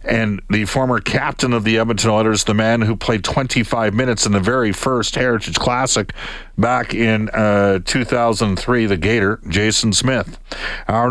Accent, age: American, 50-69